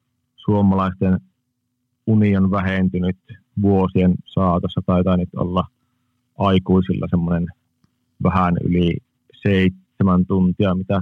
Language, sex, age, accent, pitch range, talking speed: Finnish, male, 30-49, native, 95-120 Hz, 80 wpm